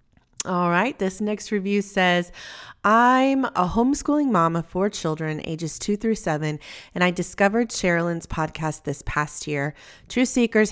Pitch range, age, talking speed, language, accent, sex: 160-205 Hz, 30-49, 150 wpm, English, American, female